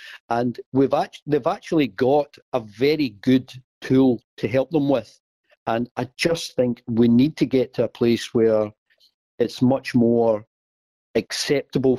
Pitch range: 115-145 Hz